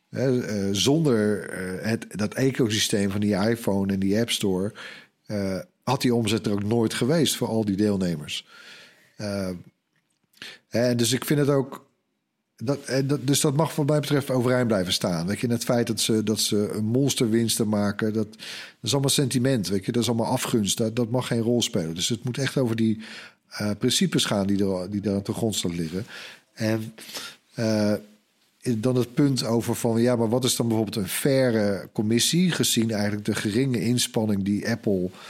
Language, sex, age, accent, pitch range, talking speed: Dutch, male, 50-69, Dutch, 105-130 Hz, 180 wpm